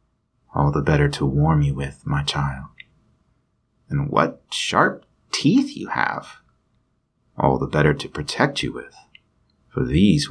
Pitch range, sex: 80-125 Hz, male